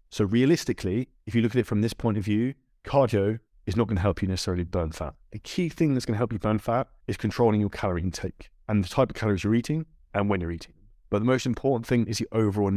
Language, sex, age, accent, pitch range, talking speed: English, male, 30-49, British, 100-120 Hz, 265 wpm